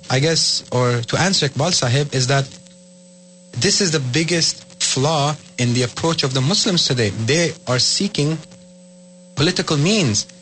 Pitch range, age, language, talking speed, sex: 140-180 Hz, 30-49, Urdu, 150 wpm, male